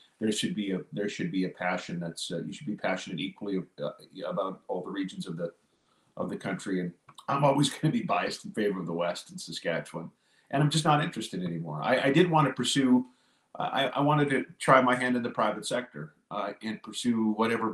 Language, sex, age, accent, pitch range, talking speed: English, male, 40-59, American, 105-135 Hz, 230 wpm